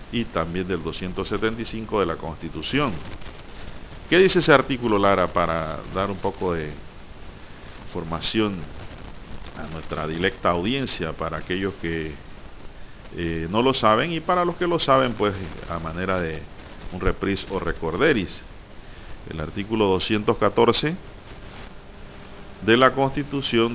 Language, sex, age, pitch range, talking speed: Spanish, male, 50-69, 85-110 Hz, 125 wpm